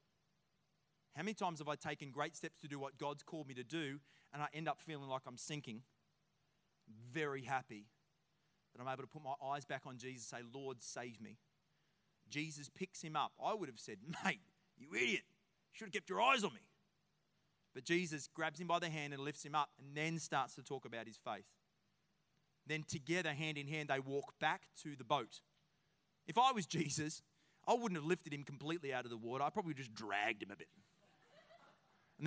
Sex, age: male, 30-49